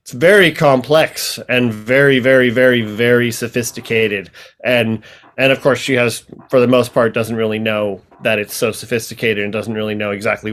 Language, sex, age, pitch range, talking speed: English, male, 30-49, 115-140 Hz, 175 wpm